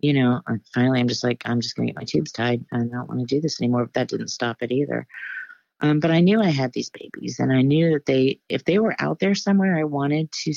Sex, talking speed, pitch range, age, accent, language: female, 275 wpm, 135-165 Hz, 40-59, American, English